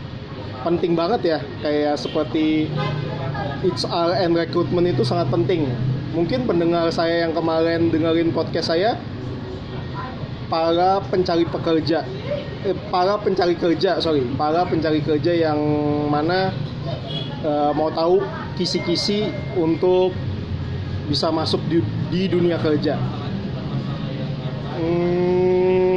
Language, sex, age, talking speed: Indonesian, male, 30-49, 100 wpm